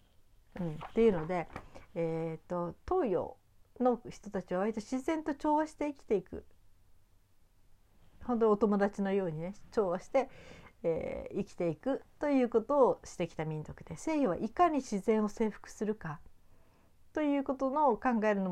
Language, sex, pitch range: Japanese, female, 170-235 Hz